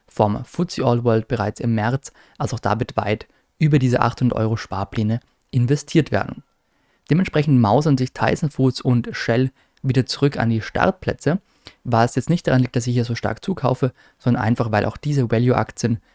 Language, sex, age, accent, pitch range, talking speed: German, male, 20-39, German, 115-135 Hz, 180 wpm